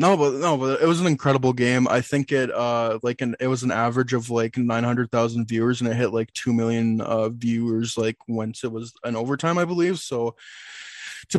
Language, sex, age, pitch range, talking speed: English, male, 20-39, 115-130 Hz, 225 wpm